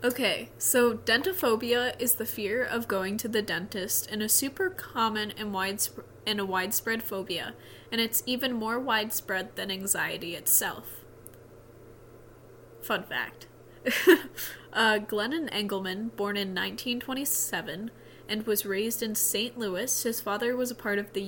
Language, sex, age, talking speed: English, female, 20-39, 135 wpm